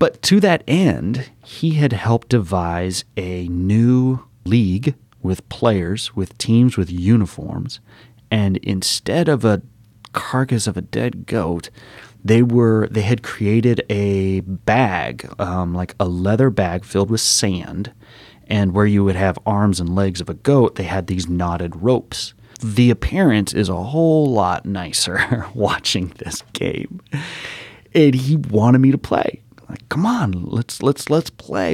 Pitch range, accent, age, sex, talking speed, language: 100-125 Hz, American, 30-49, male, 150 wpm, English